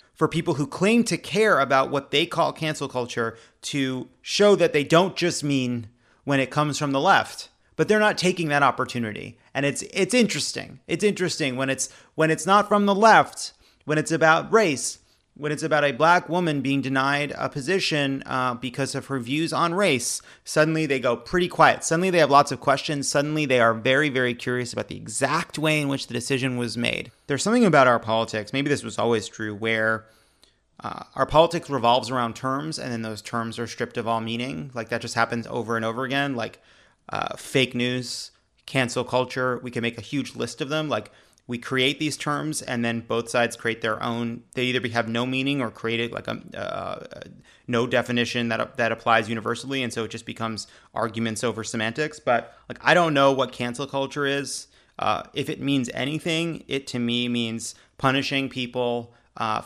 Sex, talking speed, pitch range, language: male, 200 wpm, 115-145 Hz, English